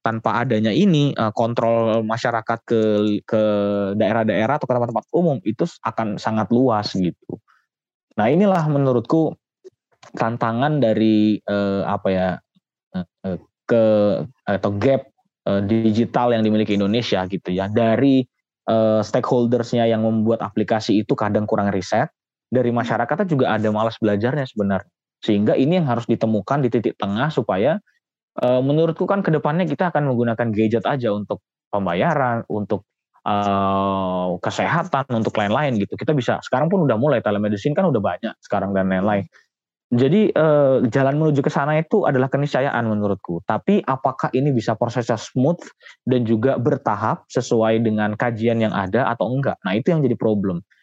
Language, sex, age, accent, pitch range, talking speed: Indonesian, male, 20-39, native, 105-135 Hz, 145 wpm